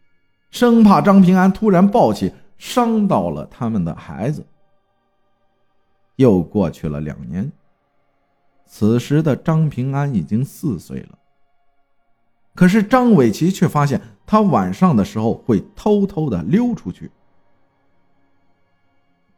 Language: Chinese